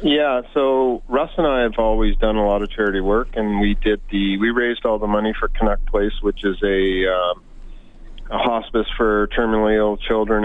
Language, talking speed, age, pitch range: English, 200 wpm, 40-59, 100-110 Hz